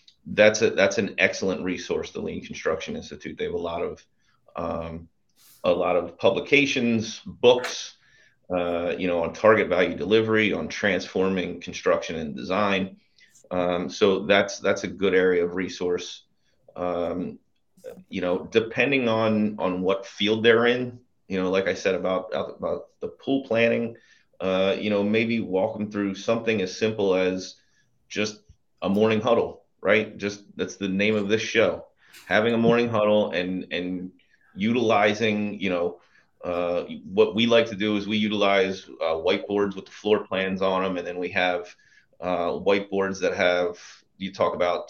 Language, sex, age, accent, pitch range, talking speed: English, male, 30-49, American, 90-115 Hz, 165 wpm